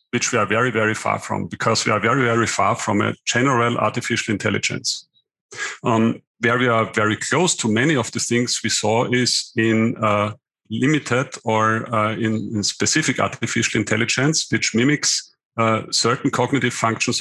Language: English